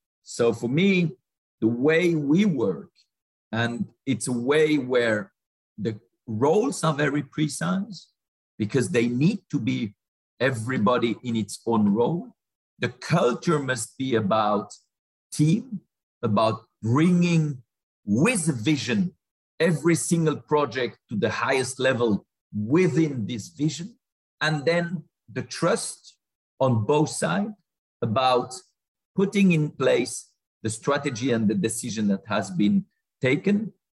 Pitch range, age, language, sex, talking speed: 120-170 Hz, 50-69, English, male, 120 wpm